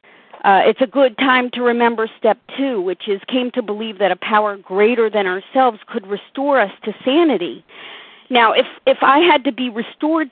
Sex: female